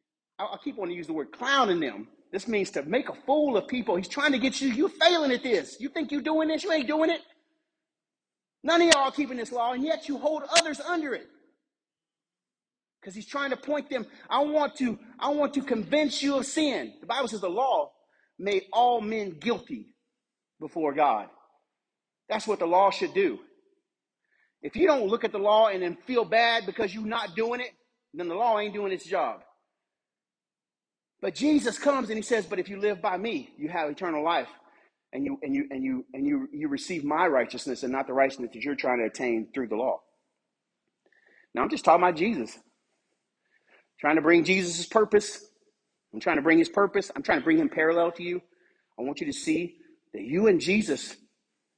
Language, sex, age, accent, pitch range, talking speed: English, male, 40-59, American, 200-300 Hz, 210 wpm